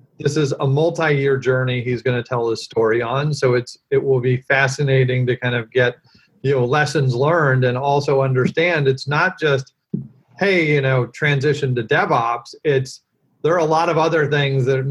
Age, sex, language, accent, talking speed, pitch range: 40-59, male, English, American, 190 wpm, 130-145 Hz